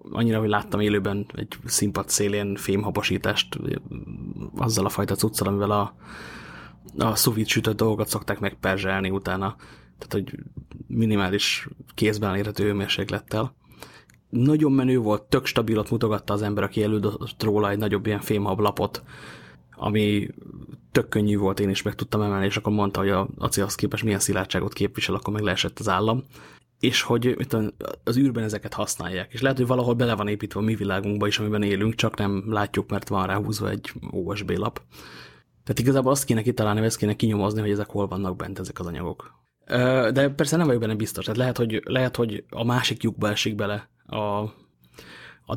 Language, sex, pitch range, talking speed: English, male, 100-115 Hz, 170 wpm